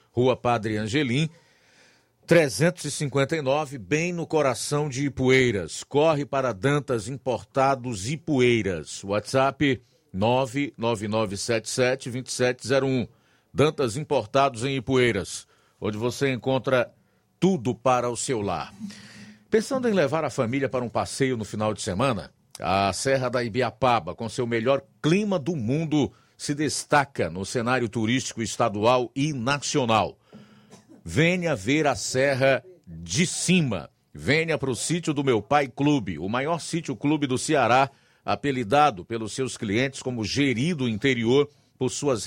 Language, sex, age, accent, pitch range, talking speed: Portuguese, male, 50-69, Brazilian, 115-145 Hz, 125 wpm